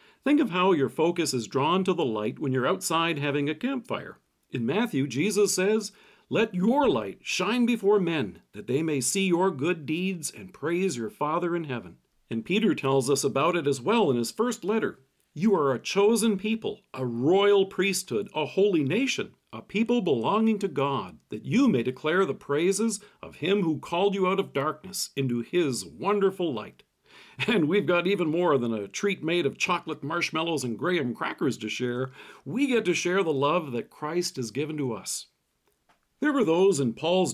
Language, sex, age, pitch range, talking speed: English, male, 50-69, 140-200 Hz, 190 wpm